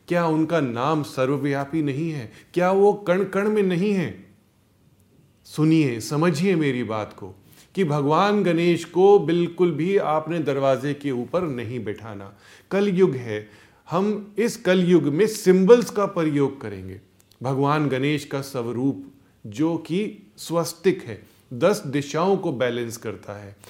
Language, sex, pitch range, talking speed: Hindi, male, 120-175 Hz, 140 wpm